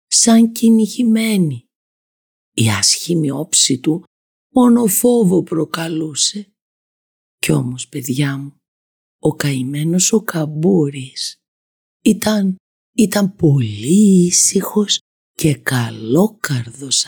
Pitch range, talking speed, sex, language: 115-175 Hz, 80 wpm, female, Greek